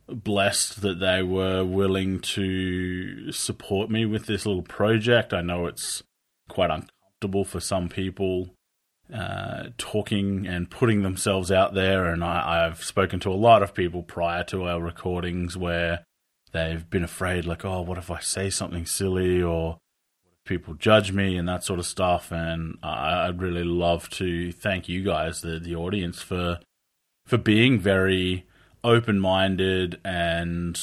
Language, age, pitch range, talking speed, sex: English, 30-49, 90-105 Hz, 150 wpm, male